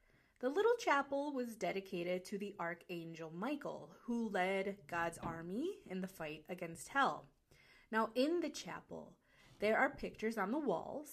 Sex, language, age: female, English, 30-49